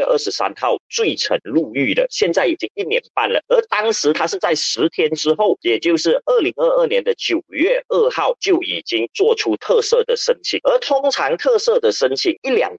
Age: 40-59